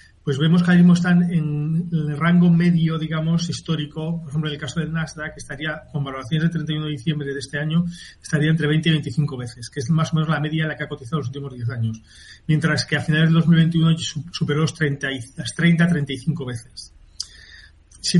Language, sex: Spanish, male